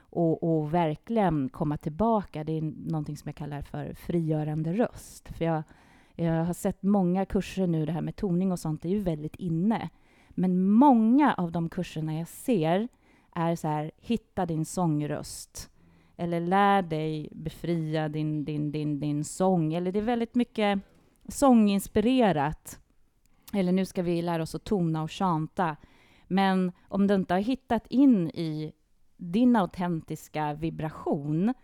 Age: 30-49